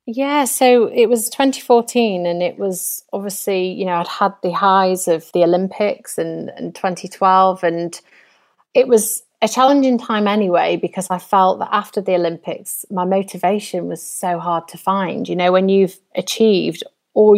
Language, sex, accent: English, female, British